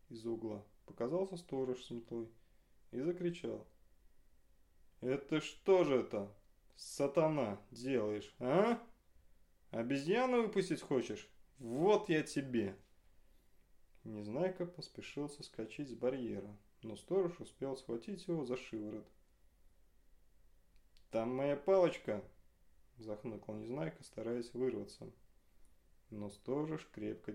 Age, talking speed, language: 20-39, 95 wpm, Russian